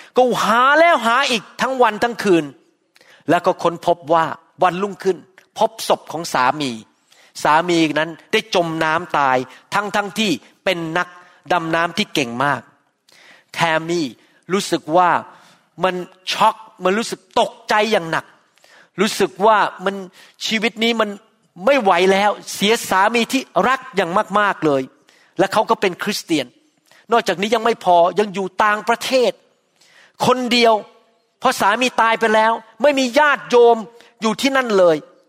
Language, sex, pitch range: Thai, male, 180-230 Hz